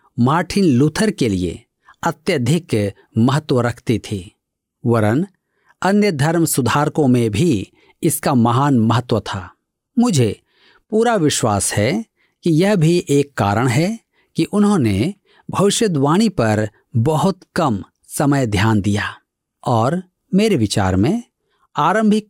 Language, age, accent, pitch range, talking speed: Hindi, 50-69, native, 110-180 Hz, 115 wpm